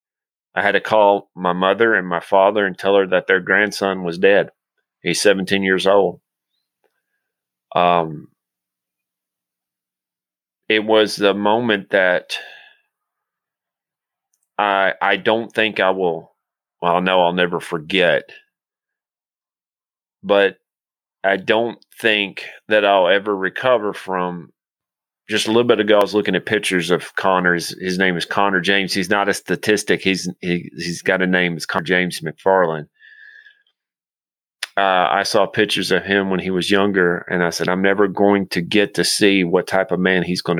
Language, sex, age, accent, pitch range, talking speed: English, male, 30-49, American, 90-105 Hz, 155 wpm